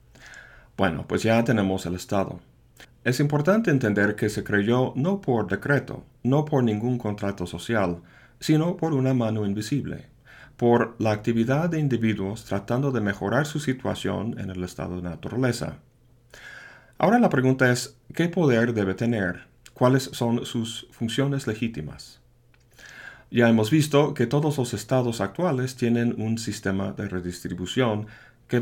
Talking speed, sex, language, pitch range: 140 wpm, male, Spanish, 100-135 Hz